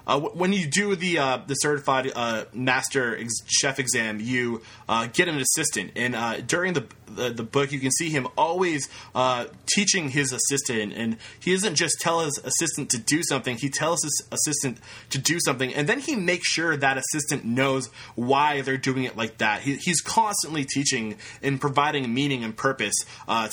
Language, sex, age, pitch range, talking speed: English, male, 20-39, 125-165 Hz, 190 wpm